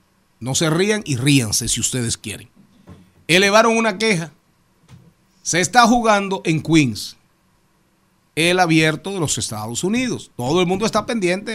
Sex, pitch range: male, 140-190 Hz